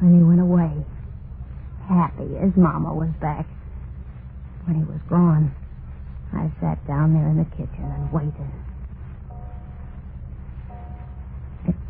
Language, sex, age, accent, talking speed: English, female, 50-69, American, 115 wpm